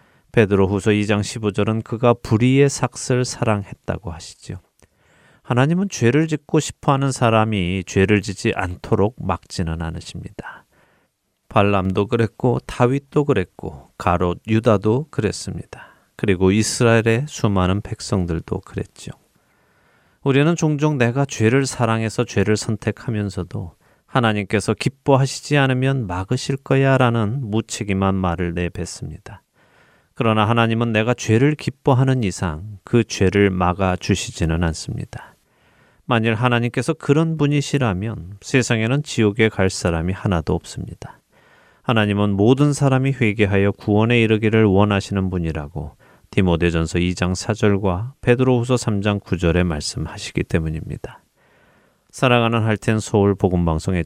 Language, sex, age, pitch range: Korean, male, 30-49, 95-125 Hz